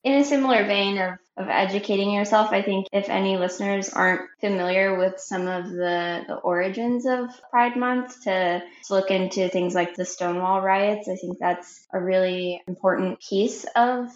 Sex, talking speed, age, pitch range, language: female, 175 wpm, 10-29, 180-215 Hz, English